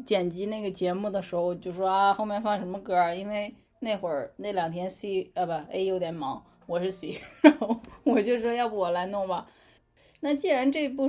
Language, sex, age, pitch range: Chinese, female, 20-39, 195-260 Hz